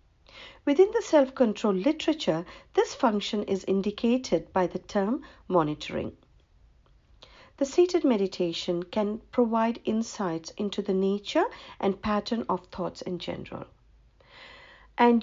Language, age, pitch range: English, 50-69, 195-275 Hz